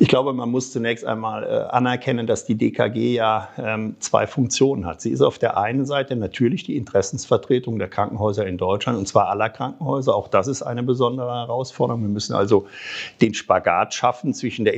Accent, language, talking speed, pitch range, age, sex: German, German, 185 wpm, 110-130 Hz, 50-69, male